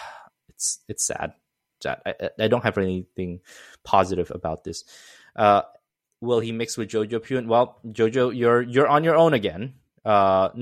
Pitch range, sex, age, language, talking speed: 95-120 Hz, male, 20-39, English, 165 wpm